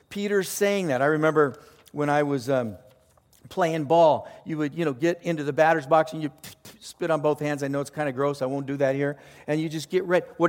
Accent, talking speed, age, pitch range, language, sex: American, 245 wpm, 50-69, 150-200 Hz, English, male